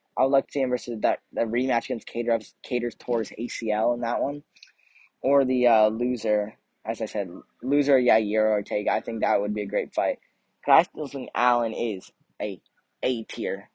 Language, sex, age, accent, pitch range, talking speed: English, male, 10-29, American, 110-125 Hz, 195 wpm